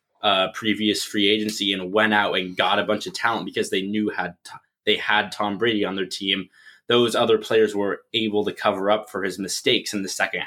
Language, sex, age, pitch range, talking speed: English, male, 20-39, 100-125 Hz, 220 wpm